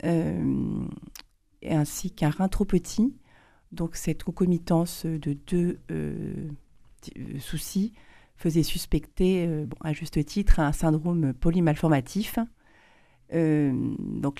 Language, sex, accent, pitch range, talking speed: French, female, French, 140-170 Hz, 115 wpm